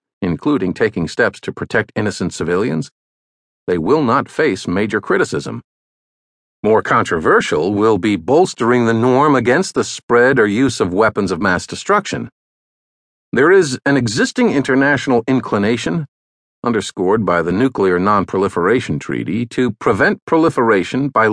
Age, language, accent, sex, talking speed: 50-69, English, American, male, 130 wpm